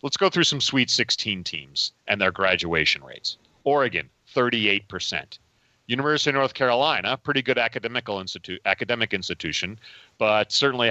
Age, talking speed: 40-59, 125 wpm